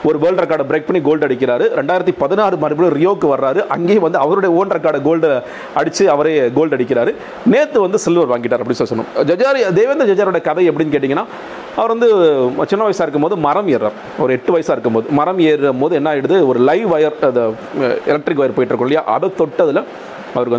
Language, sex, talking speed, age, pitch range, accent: Tamil, male, 170 wpm, 40-59, 130-180 Hz, native